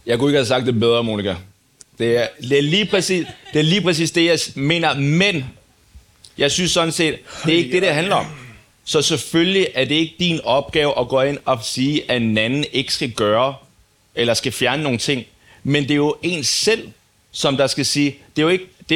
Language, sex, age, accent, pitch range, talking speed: Danish, male, 30-49, native, 120-155 Hz, 210 wpm